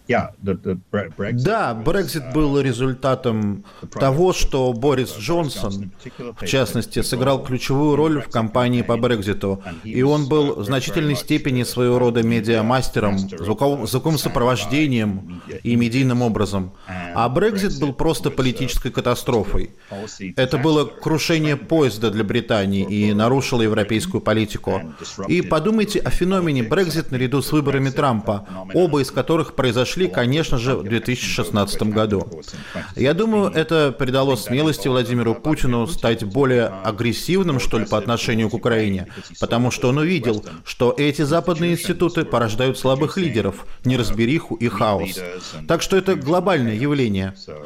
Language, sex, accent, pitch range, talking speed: Russian, male, native, 115-155 Hz, 125 wpm